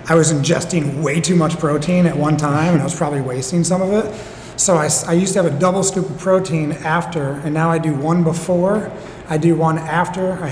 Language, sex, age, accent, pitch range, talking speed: English, male, 30-49, American, 150-175 Hz, 235 wpm